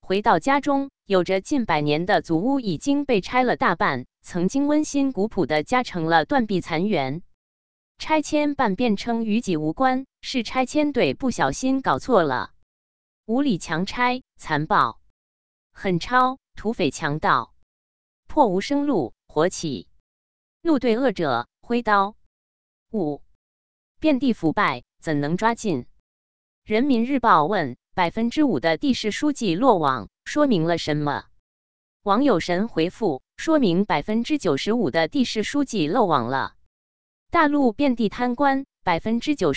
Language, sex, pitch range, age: Chinese, female, 165-260 Hz, 20-39